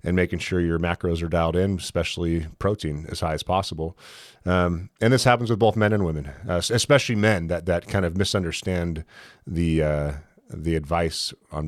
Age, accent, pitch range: 30-49, American, 80-105 Hz